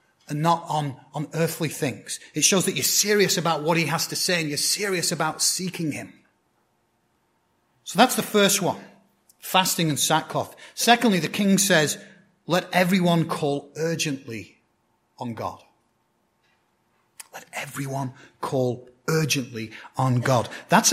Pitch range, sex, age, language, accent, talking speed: 150-205 Hz, male, 30-49, English, British, 140 wpm